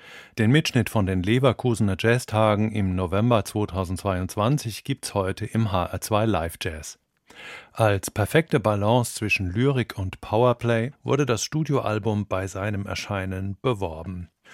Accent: German